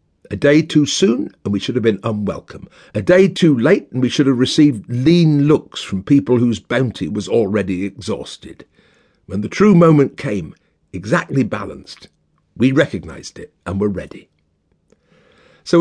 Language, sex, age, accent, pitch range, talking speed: English, male, 50-69, British, 110-160 Hz, 160 wpm